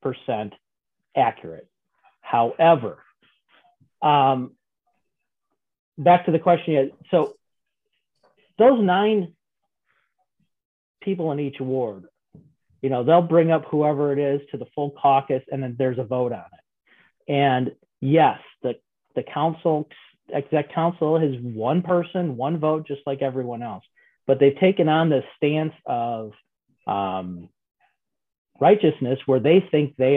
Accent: American